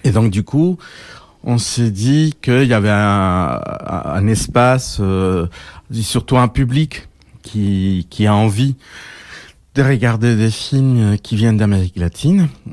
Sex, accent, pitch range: male, French, 100-125 Hz